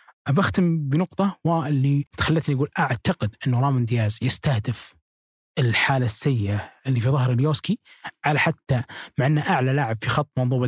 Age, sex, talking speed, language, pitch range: 20-39, male, 140 wpm, Arabic, 125-160 Hz